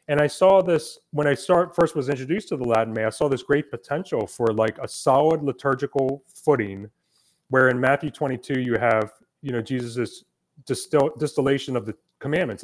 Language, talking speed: English, 185 wpm